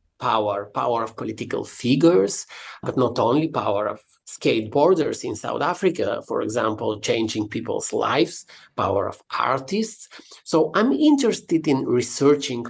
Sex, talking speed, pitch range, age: male, 130 wpm, 130-195 Hz, 50-69